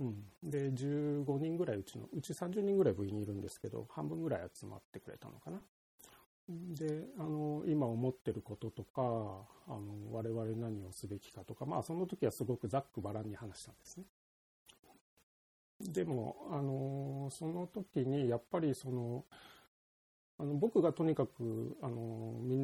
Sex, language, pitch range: male, Japanese, 110-140 Hz